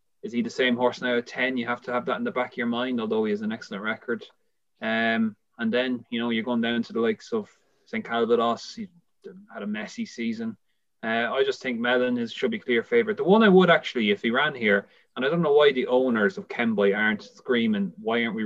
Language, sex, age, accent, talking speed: English, male, 30-49, Irish, 250 wpm